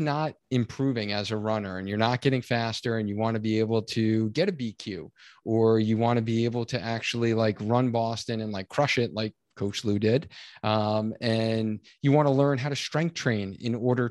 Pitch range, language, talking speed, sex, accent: 110-130 Hz, English, 215 wpm, male, American